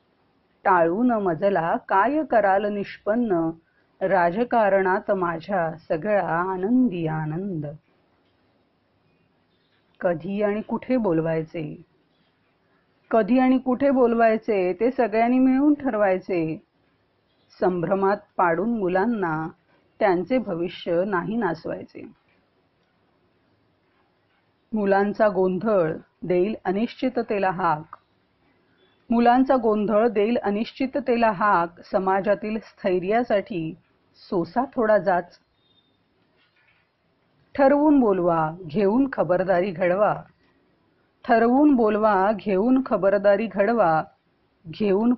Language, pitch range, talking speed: Marathi, 175-230 Hz, 75 wpm